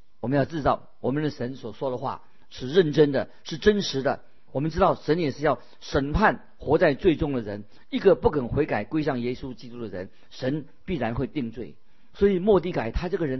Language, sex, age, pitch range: Chinese, male, 50-69, 115-150 Hz